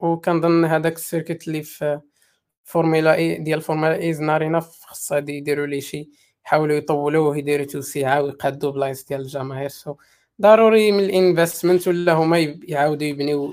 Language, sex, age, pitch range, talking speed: Arabic, male, 20-39, 145-180 Hz, 155 wpm